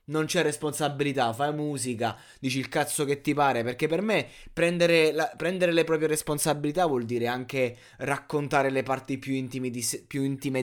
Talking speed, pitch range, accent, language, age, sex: 160 wpm, 125-150 Hz, native, Italian, 20-39, male